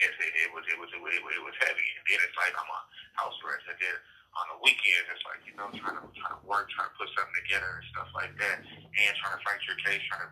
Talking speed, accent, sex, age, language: 285 wpm, American, male, 30-49, English